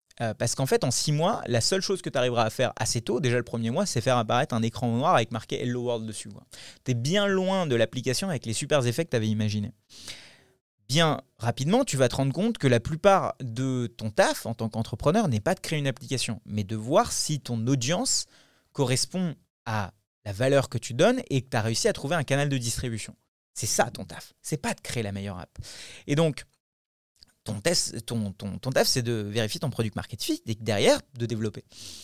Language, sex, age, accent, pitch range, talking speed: French, male, 30-49, French, 110-140 Hz, 230 wpm